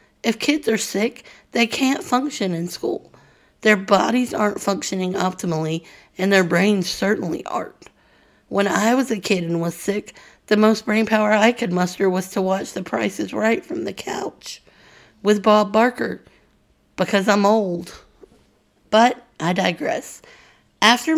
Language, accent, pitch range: English, American, 180-225 Hz